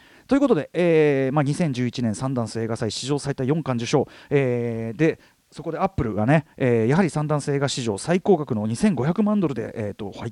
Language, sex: Japanese, male